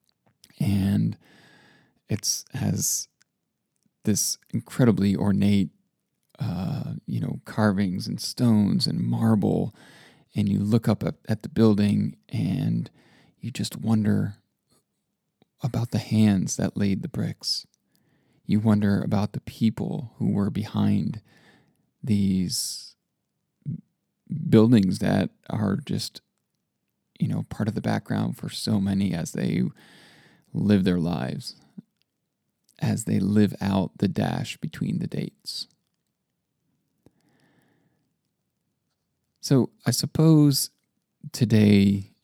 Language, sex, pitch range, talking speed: English, male, 100-125 Hz, 105 wpm